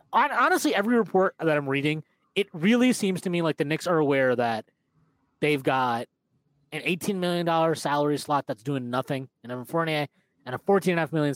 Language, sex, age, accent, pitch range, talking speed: English, male, 30-49, American, 135-165 Hz, 180 wpm